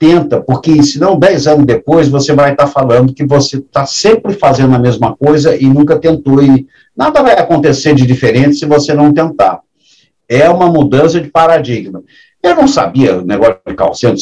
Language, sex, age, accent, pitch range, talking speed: Portuguese, male, 60-79, Brazilian, 130-210 Hz, 180 wpm